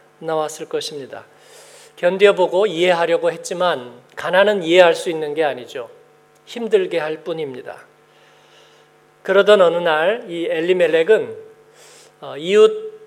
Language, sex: Korean, male